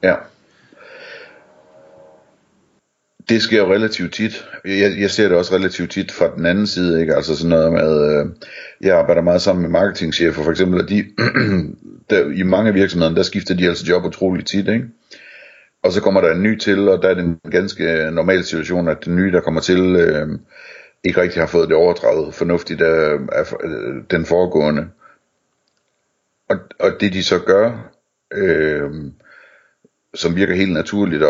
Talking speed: 175 wpm